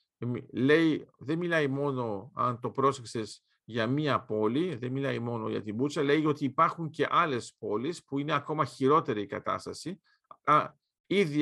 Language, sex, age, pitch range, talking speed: Greek, male, 50-69, 130-170 Hz, 150 wpm